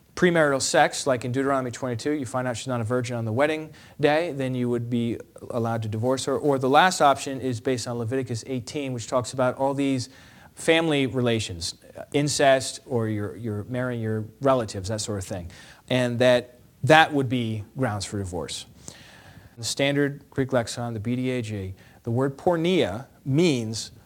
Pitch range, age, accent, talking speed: 120-150 Hz, 40-59, American, 175 wpm